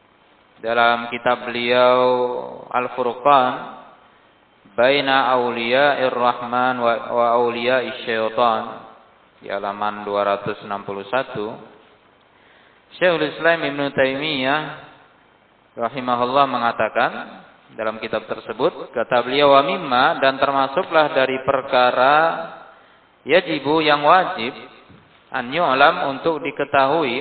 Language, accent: Indonesian, native